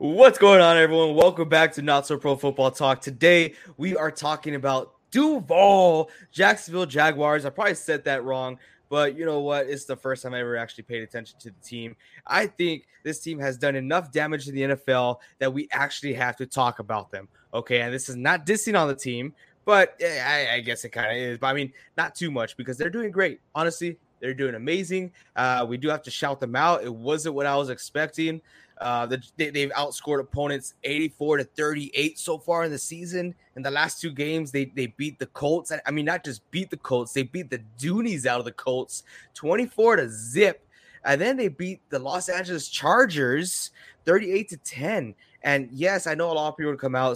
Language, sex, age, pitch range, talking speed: English, male, 20-39, 130-165 Hz, 215 wpm